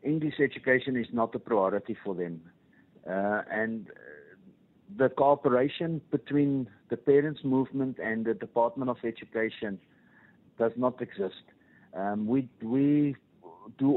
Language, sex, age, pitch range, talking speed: English, male, 50-69, 110-145 Hz, 120 wpm